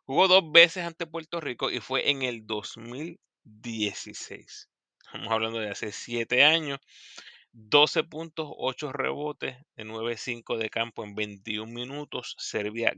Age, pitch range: 30-49, 115-155 Hz